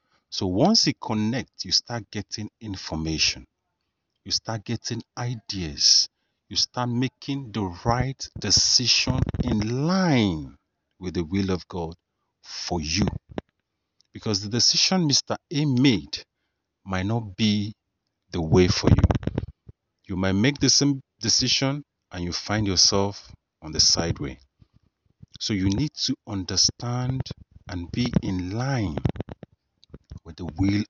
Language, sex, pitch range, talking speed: English, male, 90-120 Hz, 125 wpm